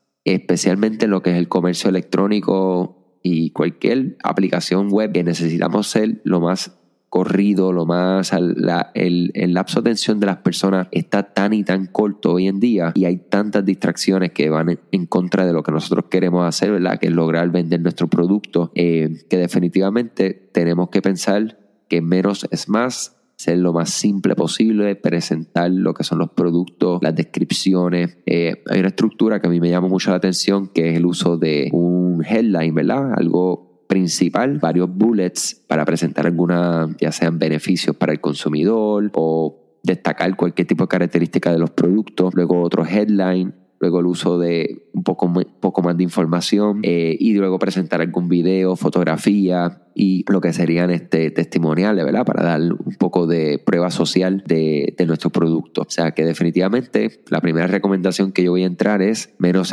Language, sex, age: Spanish, male, 20-39